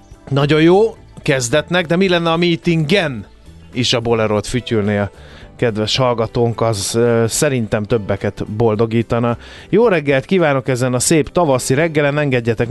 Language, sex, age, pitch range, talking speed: Hungarian, male, 30-49, 115-140 Hz, 135 wpm